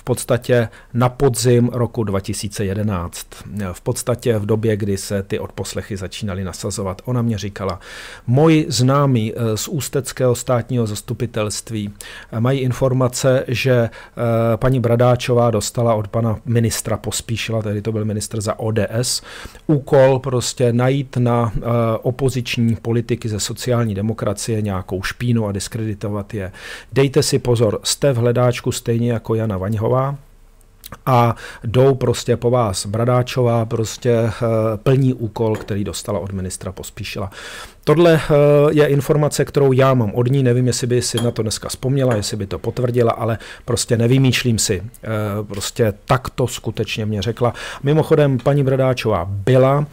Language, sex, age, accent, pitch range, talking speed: Czech, male, 40-59, native, 110-130 Hz, 135 wpm